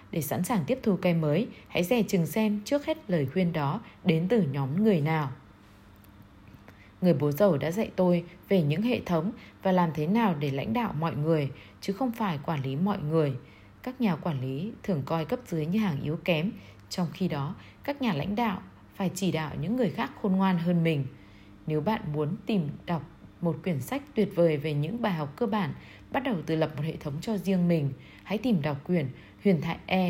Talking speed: 215 wpm